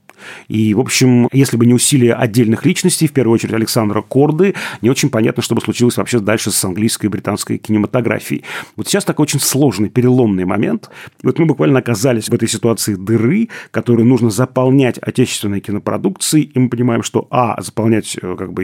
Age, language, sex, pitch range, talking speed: 30-49, Russian, male, 105-125 Hz, 175 wpm